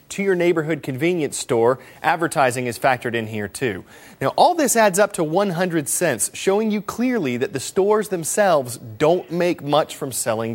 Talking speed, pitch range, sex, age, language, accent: 175 wpm, 130-185 Hz, male, 30-49, English, American